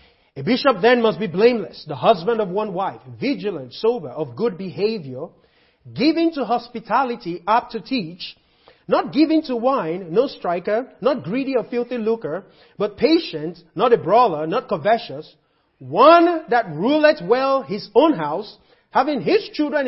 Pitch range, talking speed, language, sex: 180-260 Hz, 150 wpm, English, male